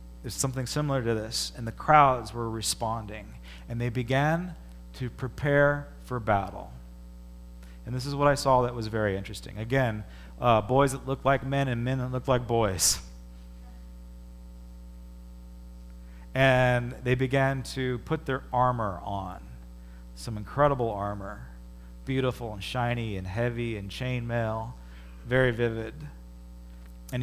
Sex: male